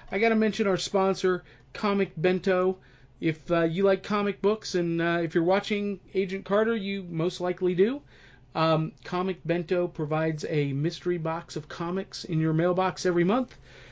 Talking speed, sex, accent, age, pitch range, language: 165 wpm, male, American, 40-59, 150-185 Hz, English